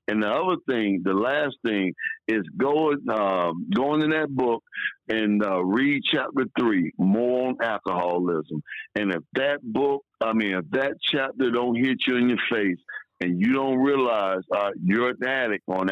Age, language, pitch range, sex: 60-79, English, 110-145 Hz, male